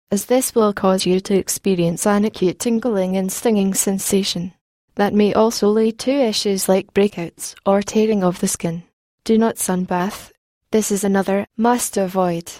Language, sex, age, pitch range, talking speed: English, female, 20-39, 185-220 Hz, 155 wpm